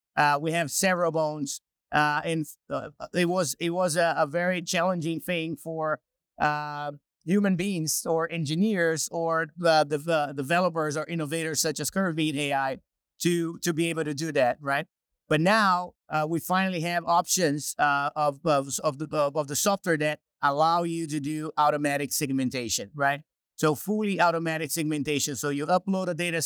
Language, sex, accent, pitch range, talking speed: English, male, American, 145-170 Hz, 170 wpm